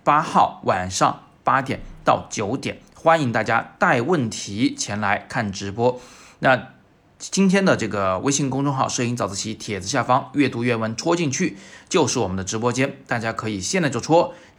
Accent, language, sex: native, Chinese, male